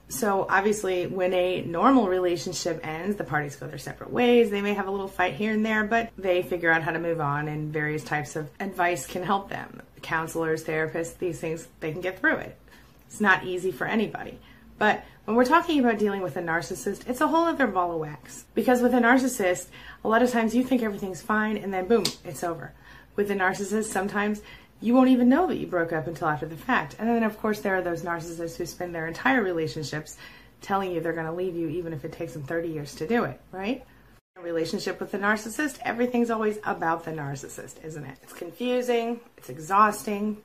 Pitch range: 165-220 Hz